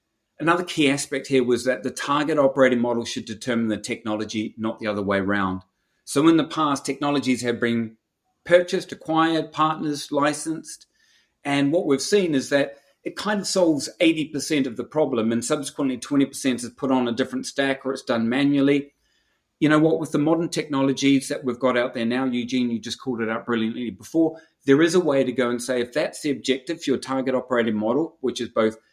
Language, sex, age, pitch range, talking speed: English, male, 40-59, 120-150 Hz, 205 wpm